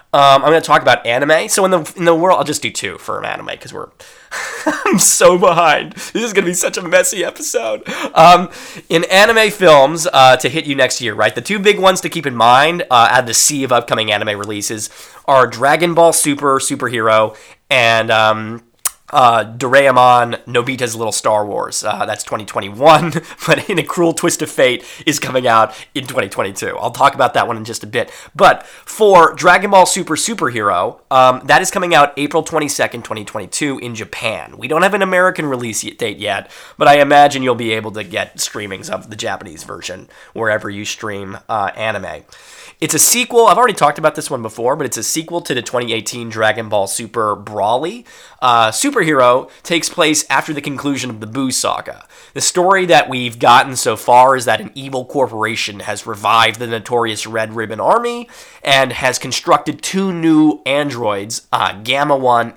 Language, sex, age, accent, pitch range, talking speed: English, male, 20-39, American, 115-165 Hz, 190 wpm